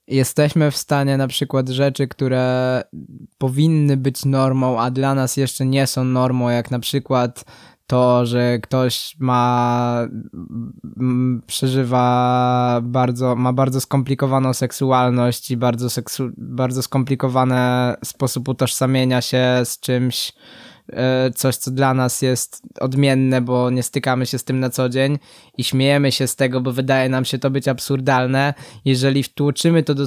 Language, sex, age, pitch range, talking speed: Polish, male, 20-39, 125-135 Hz, 145 wpm